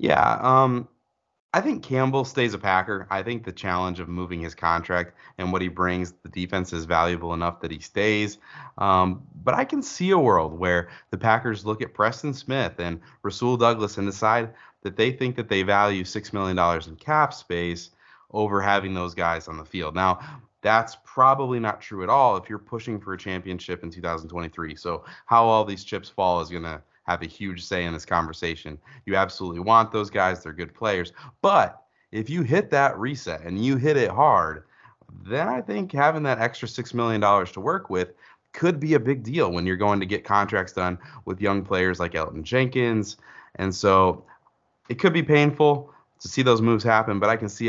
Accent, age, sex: American, 30-49, male